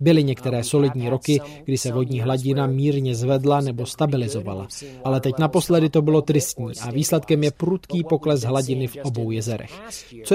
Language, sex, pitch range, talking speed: Czech, male, 130-160 Hz, 160 wpm